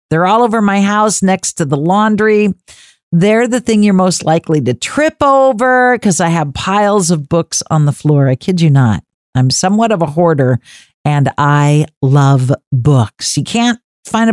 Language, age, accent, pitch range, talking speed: English, 50-69, American, 150-215 Hz, 180 wpm